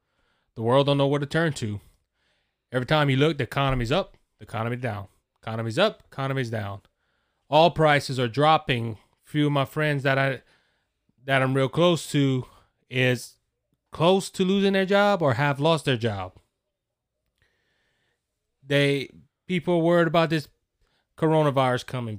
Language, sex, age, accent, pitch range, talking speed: English, male, 20-39, American, 120-150 Hz, 155 wpm